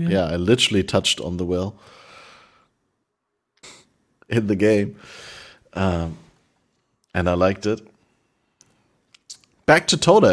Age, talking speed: 30-49, 105 wpm